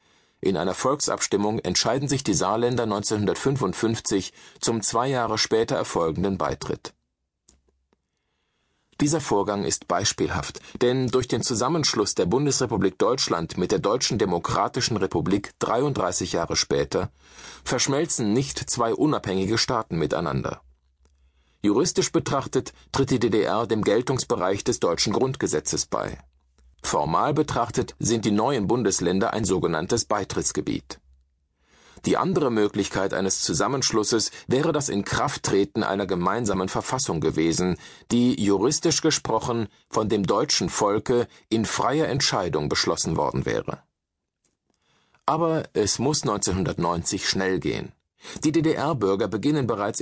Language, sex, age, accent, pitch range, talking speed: German, male, 40-59, German, 95-130 Hz, 115 wpm